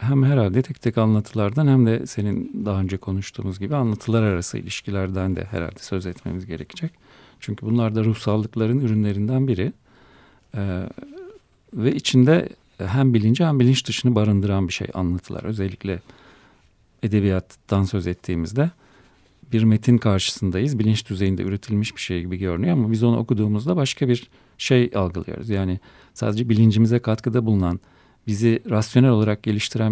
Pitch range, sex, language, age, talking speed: 100-125 Hz, male, Turkish, 40-59, 140 wpm